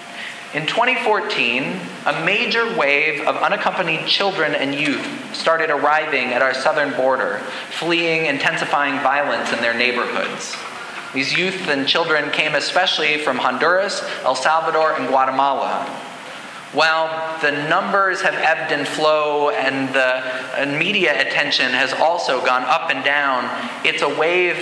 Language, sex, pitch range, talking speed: English, male, 145-195 Hz, 130 wpm